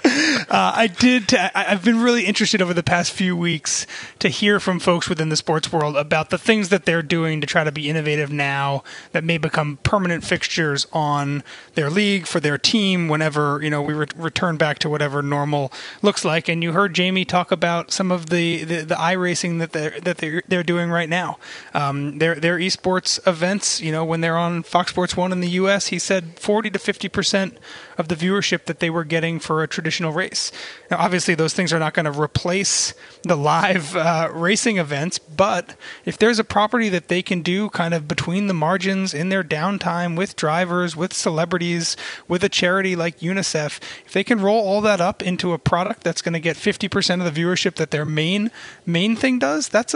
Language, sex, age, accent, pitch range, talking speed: English, male, 30-49, American, 160-195 Hz, 210 wpm